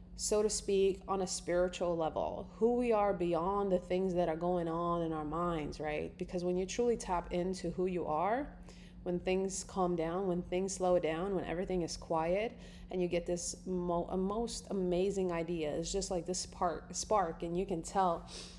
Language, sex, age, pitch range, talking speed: English, female, 30-49, 170-200 Hz, 190 wpm